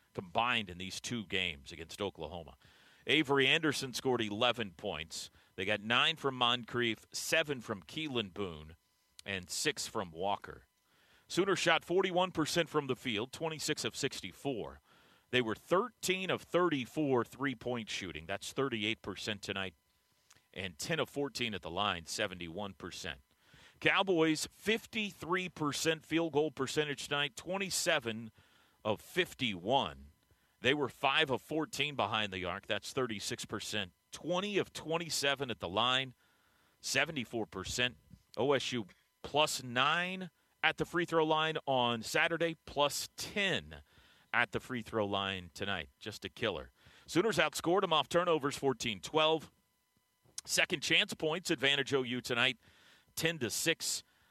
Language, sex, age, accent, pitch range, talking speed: English, male, 40-59, American, 105-155 Hz, 125 wpm